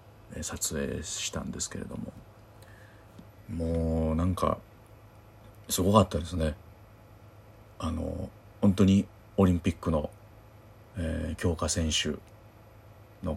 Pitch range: 85-105 Hz